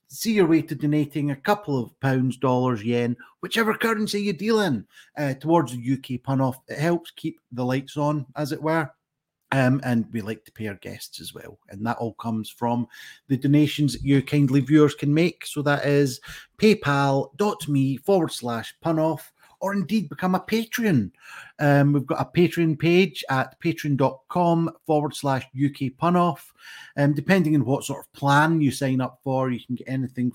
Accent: British